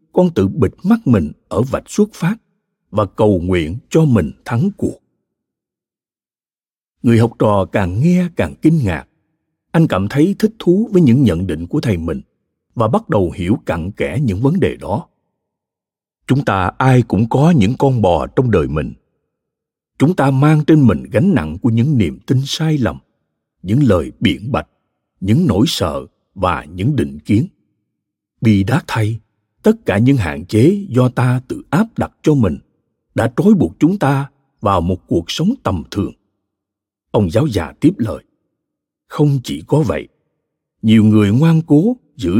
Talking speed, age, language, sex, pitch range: 170 wpm, 60-79, Vietnamese, male, 105-160 Hz